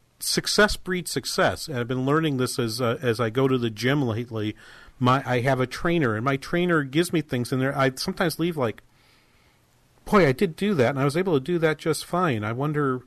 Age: 40-59